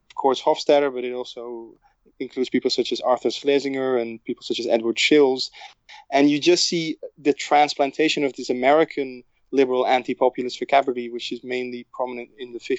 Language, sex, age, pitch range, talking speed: English, male, 20-39, 120-140 Hz, 170 wpm